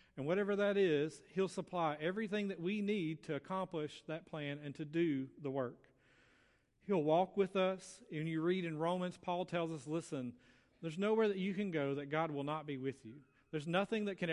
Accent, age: American, 40-59